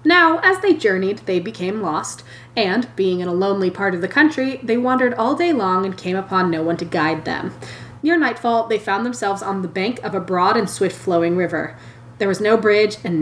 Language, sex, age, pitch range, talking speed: English, female, 20-39, 170-230 Hz, 220 wpm